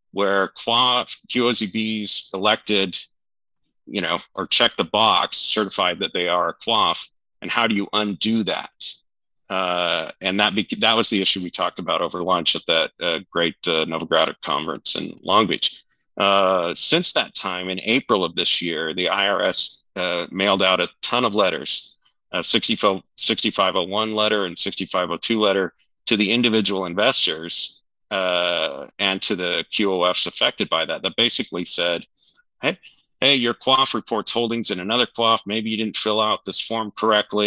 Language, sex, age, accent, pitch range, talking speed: English, male, 40-59, American, 90-110 Hz, 165 wpm